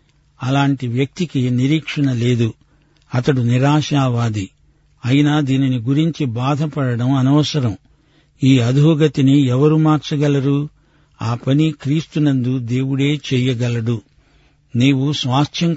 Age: 60-79